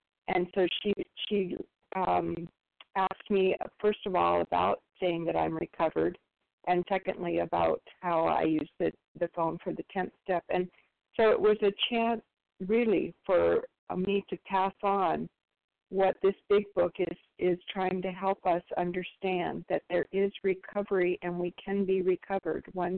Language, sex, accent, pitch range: English, female, American, 175-195 Hz